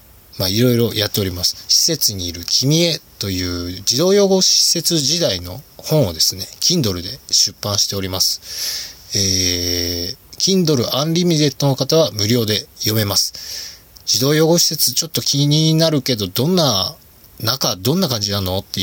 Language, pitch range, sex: Japanese, 95-150 Hz, male